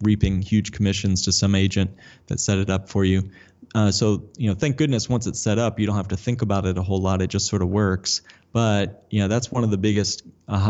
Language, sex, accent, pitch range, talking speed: English, male, American, 100-115 Hz, 260 wpm